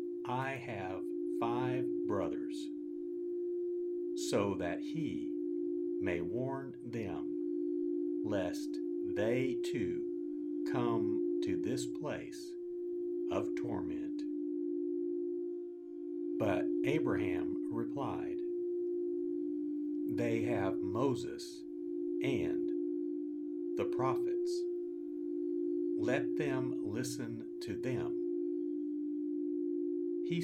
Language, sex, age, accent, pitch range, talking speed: English, male, 50-69, American, 320-345 Hz, 65 wpm